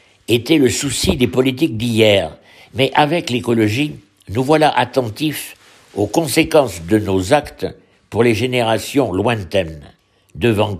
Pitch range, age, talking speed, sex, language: 105-145 Hz, 60-79, 120 wpm, male, French